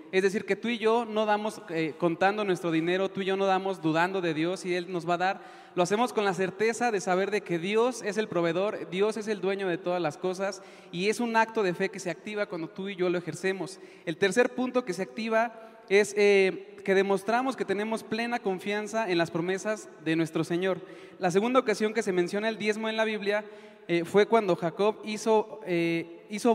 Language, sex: Spanish, male